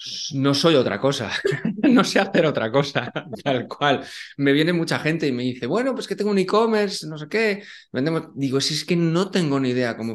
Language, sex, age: Spanish, male, 20-39